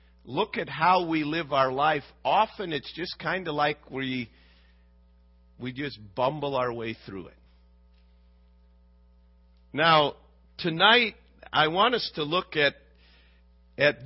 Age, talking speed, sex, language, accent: 50-69, 130 wpm, male, English, American